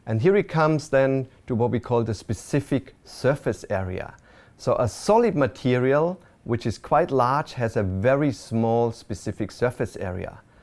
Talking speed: 160 wpm